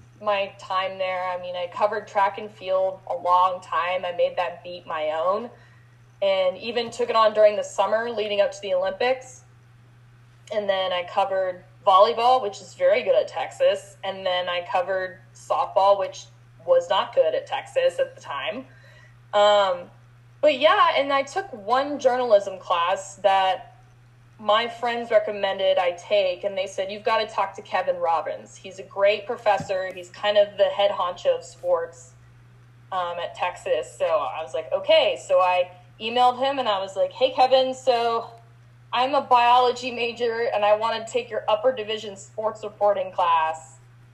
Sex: female